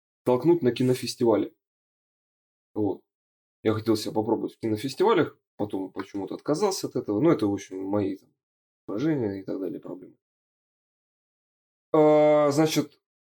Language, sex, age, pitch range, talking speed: Russian, male, 20-39, 105-140 Hz, 115 wpm